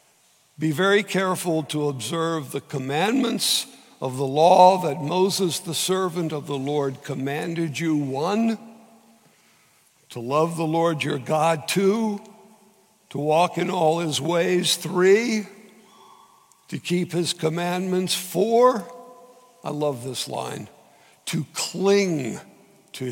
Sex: male